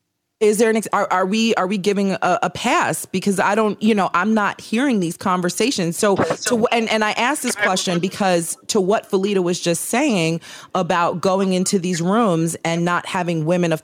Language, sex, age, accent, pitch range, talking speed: English, female, 30-49, American, 160-200 Hz, 210 wpm